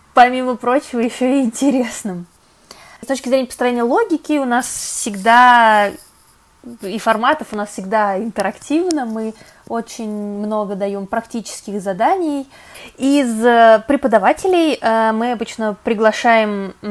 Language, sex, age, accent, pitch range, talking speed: Russian, female, 20-39, native, 195-230 Hz, 105 wpm